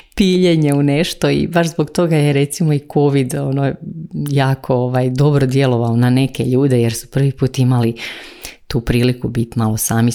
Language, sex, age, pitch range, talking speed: Croatian, female, 30-49, 120-145 Hz, 170 wpm